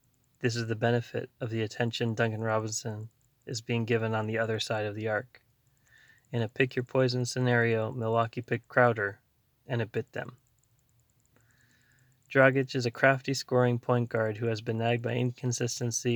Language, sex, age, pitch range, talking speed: English, male, 20-39, 115-125 Hz, 160 wpm